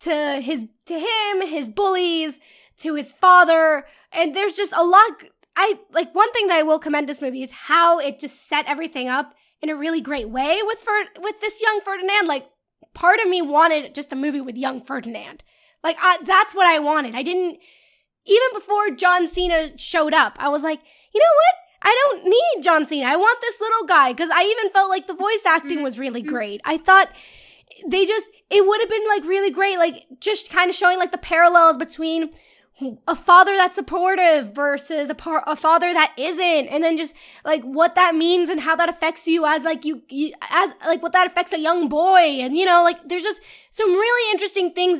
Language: English